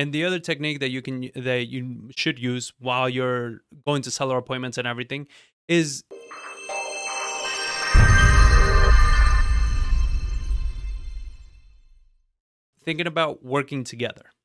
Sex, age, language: male, 20-39, English